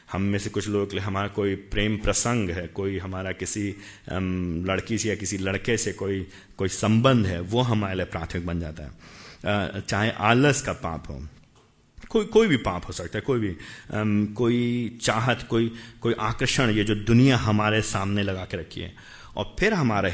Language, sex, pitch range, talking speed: Hindi, male, 90-115 Hz, 190 wpm